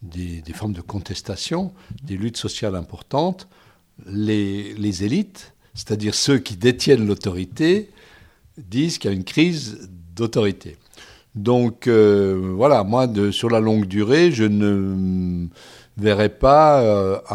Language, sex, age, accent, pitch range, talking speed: French, male, 60-79, French, 95-120 Hz, 130 wpm